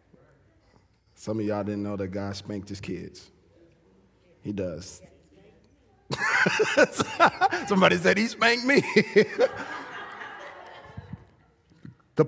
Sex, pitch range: male, 145-200 Hz